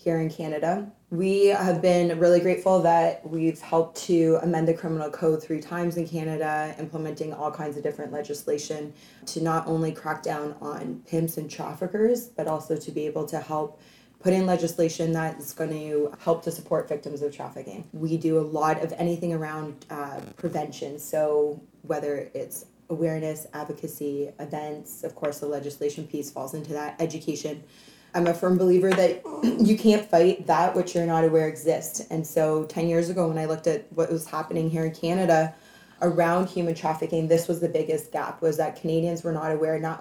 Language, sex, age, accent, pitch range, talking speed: English, female, 20-39, American, 155-170 Hz, 185 wpm